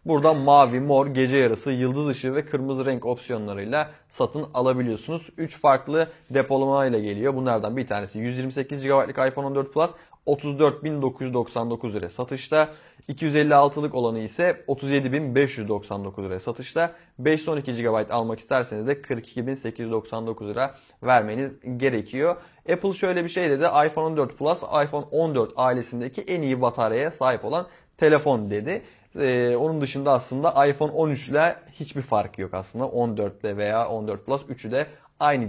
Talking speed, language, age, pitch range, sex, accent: 135 wpm, Turkish, 30-49, 115-145 Hz, male, native